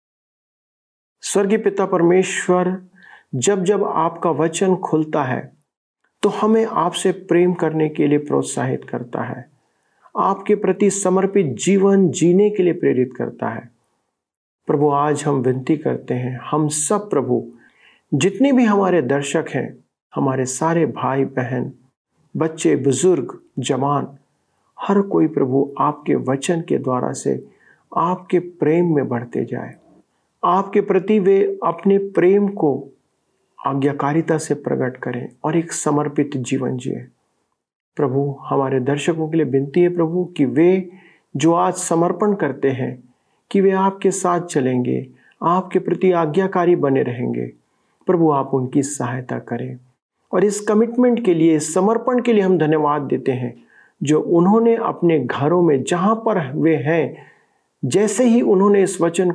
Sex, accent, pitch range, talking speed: male, native, 140-190 Hz, 135 wpm